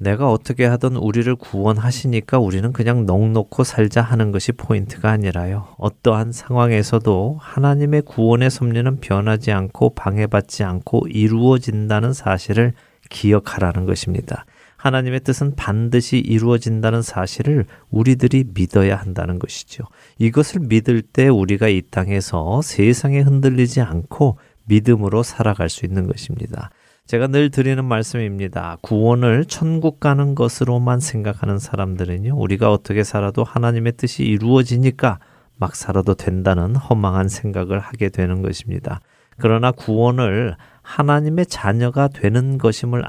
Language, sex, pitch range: Korean, male, 100-125 Hz